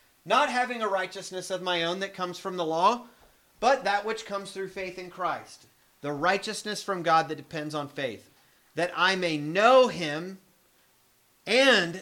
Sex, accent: male, American